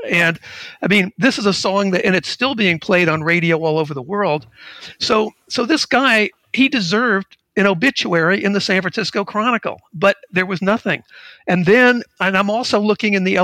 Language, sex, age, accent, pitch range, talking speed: English, male, 50-69, American, 155-205 Hz, 195 wpm